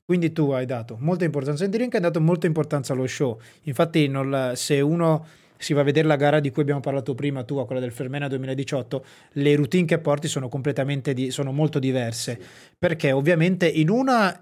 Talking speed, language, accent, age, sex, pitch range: 205 wpm, Italian, native, 20-39, male, 140-170 Hz